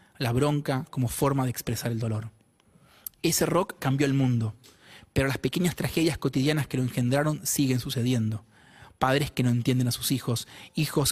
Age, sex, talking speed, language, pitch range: 30-49, male, 165 wpm, Spanish, 120-145 Hz